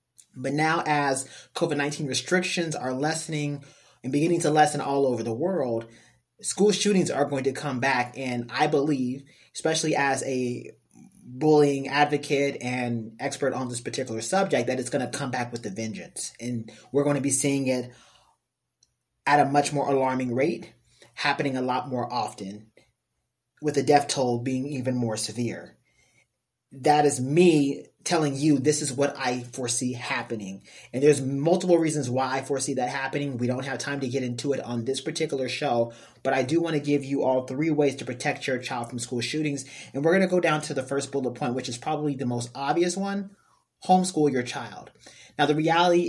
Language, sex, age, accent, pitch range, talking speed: English, male, 30-49, American, 125-150 Hz, 185 wpm